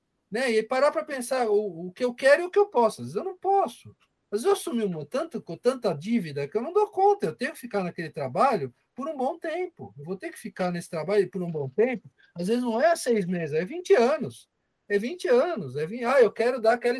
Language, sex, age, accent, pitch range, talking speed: Portuguese, male, 50-69, Brazilian, 175-260 Hz, 255 wpm